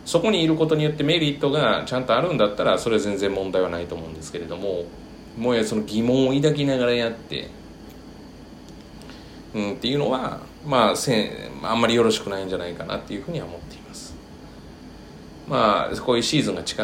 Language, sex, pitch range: Japanese, male, 95-140 Hz